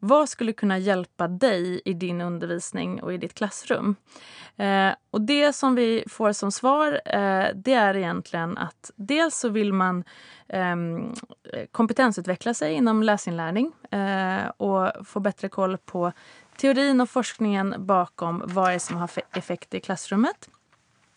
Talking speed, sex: 130 wpm, female